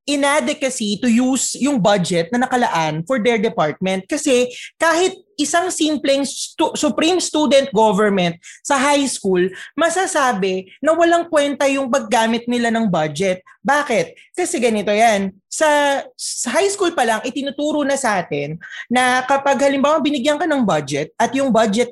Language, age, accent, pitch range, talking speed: Filipino, 20-39, native, 200-295 Hz, 150 wpm